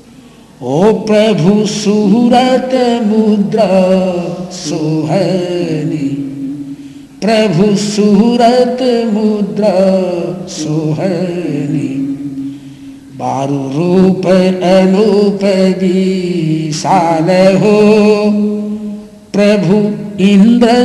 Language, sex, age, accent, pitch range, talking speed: Hindi, male, 60-79, native, 155-210 Hz, 45 wpm